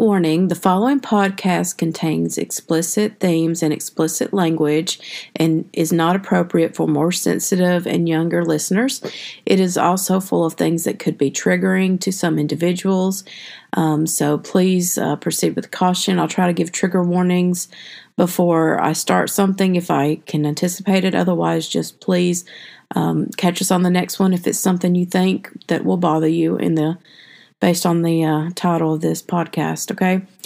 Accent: American